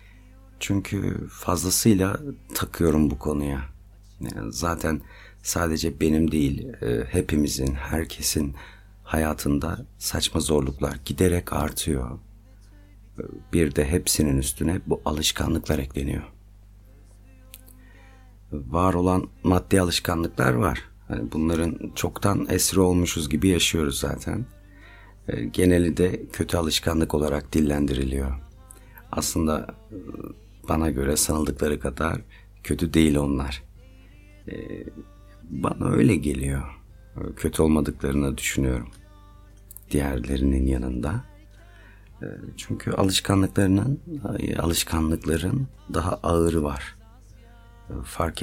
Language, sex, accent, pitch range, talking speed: Turkish, male, native, 75-100 Hz, 80 wpm